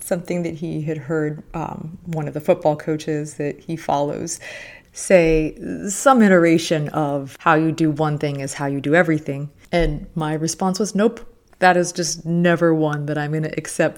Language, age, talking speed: English, 30-49, 185 wpm